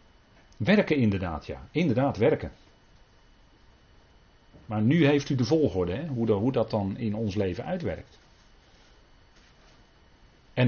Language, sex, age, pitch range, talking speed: Dutch, male, 40-59, 95-130 Hz, 125 wpm